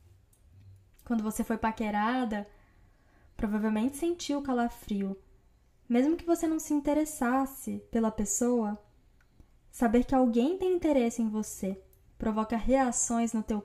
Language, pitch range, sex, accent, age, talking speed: Portuguese, 195-255 Hz, female, Brazilian, 10-29, 115 wpm